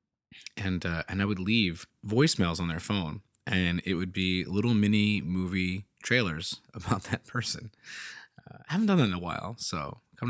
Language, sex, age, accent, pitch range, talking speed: English, male, 20-39, American, 85-100 Hz, 180 wpm